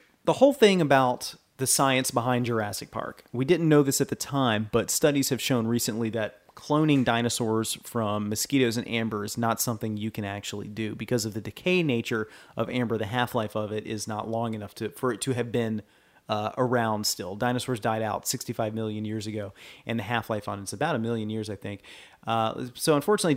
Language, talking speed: English, 205 wpm